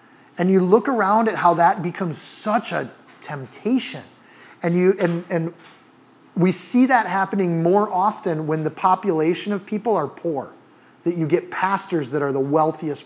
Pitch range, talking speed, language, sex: 150-185 Hz, 165 wpm, English, male